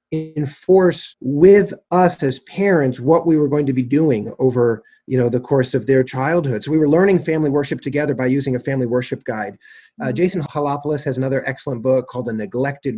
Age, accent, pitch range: 40-59, American, 135-170 Hz